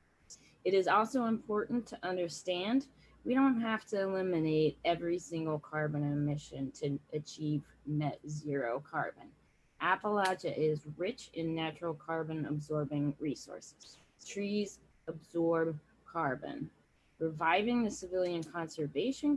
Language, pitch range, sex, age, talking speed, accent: English, 150-200 Hz, female, 20-39, 110 wpm, American